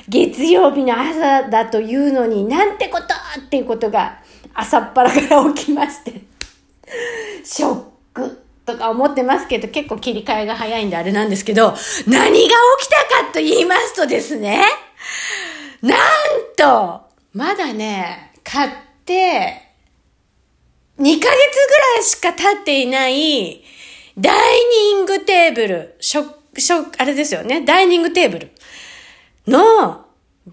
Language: Japanese